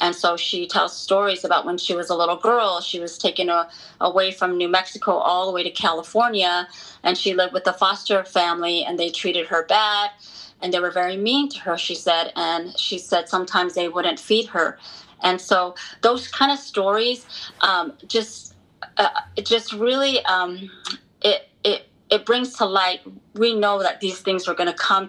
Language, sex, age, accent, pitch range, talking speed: English, female, 30-49, American, 170-200 Hz, 190 wpm